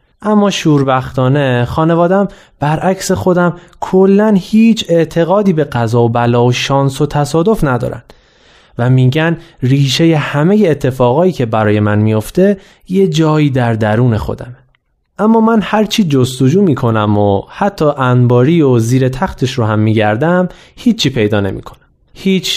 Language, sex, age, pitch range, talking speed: Persian, male, 30-49, 120-175 Hz, 130 wpm